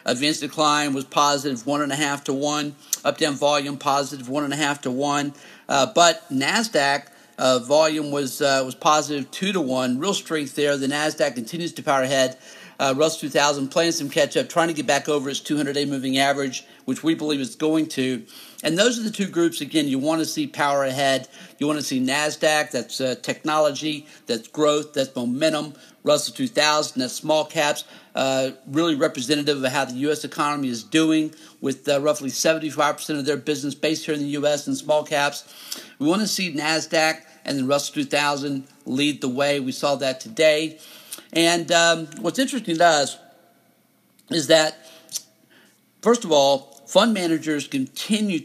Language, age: English, 50-69